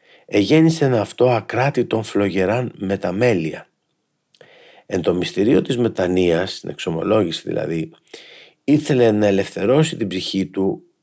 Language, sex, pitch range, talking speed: Greek, male, 90-125 Hz, 110 wpm